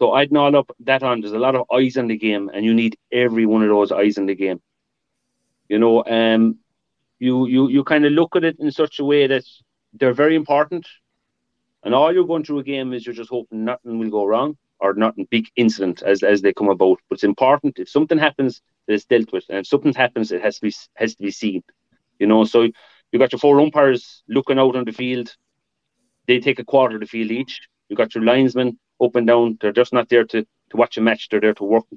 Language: English